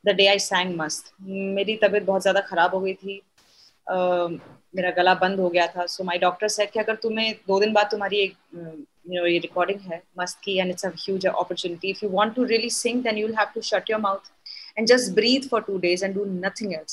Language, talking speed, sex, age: Hindi, 110 wpm, female, 20-39